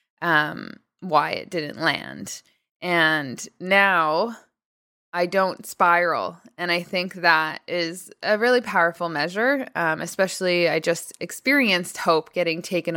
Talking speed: 125 wpm